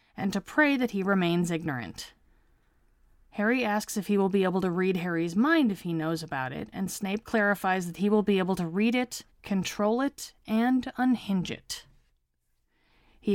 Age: 20-39